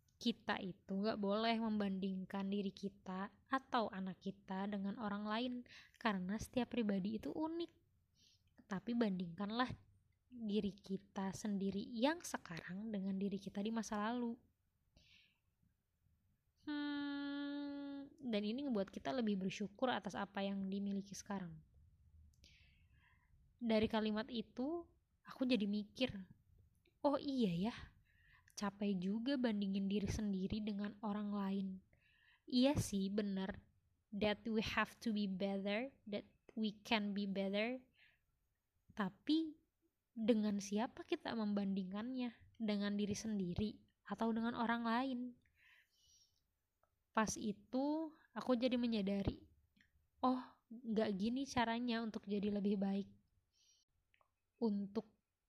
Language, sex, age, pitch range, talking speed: Indonesian, female, 20-39, 195-240 Hz, 110 wpm